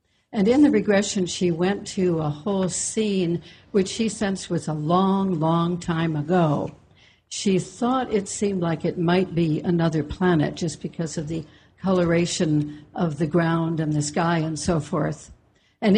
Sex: female